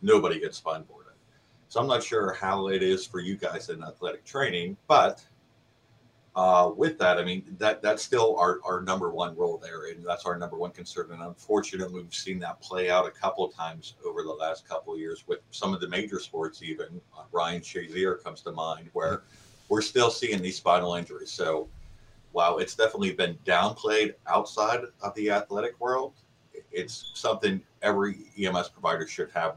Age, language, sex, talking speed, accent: 50-69, English, male, 190 wpm, American